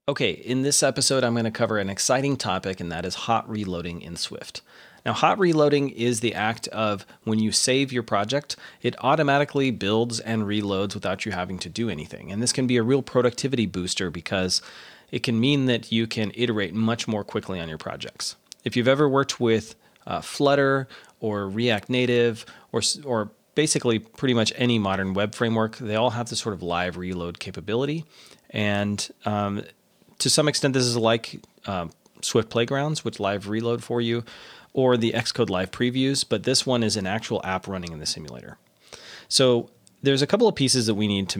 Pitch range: 100-125 Hz